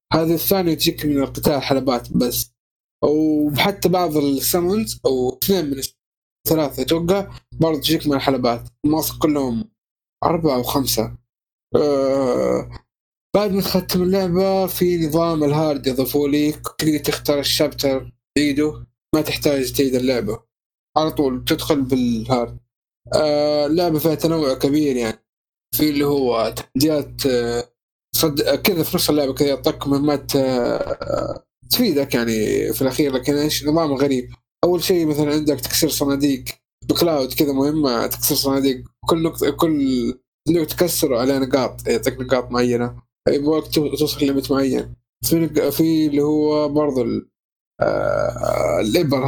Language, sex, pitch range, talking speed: Arabic, male, 130-155 Hz, 125 wpm